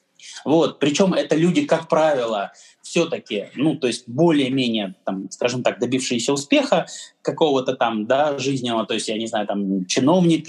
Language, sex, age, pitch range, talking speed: Russian, male, 20-39, 115-165 Hz, 130 wpm